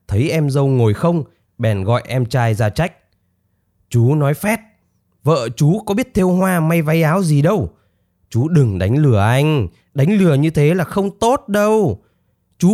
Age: 20-39